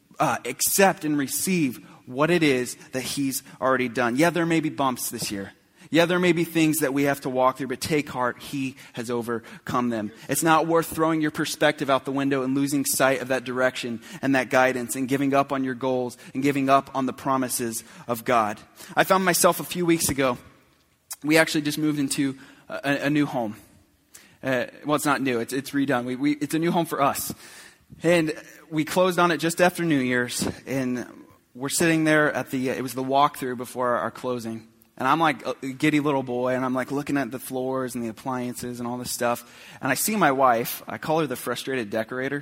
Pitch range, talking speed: 125-150 Hz, 215 wpm